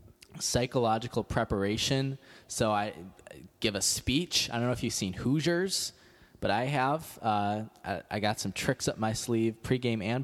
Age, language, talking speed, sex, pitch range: 20-39, English, 165 wpm, male, 100-120 Hz